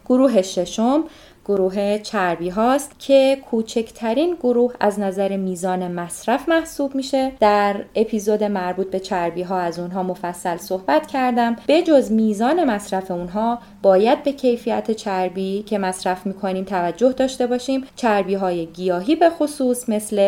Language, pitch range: Persian, 185-245 Hz